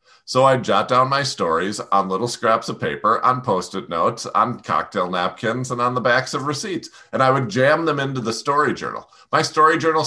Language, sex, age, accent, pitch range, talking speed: English, male, 50-69, American, 100-135 Hz, 210 wpm